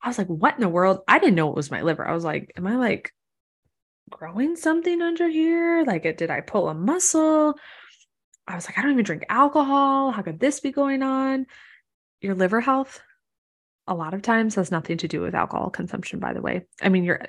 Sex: female